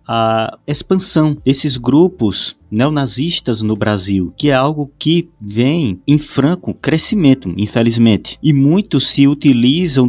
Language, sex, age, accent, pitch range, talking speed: Portuguese, male, 20-39, Brazilian, 110-150 Hz, 120 wpm